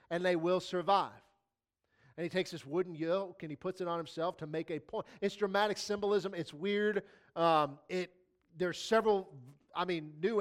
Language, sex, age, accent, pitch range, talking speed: English, male, 40-59, American, 170-215 Hz, 180 wpm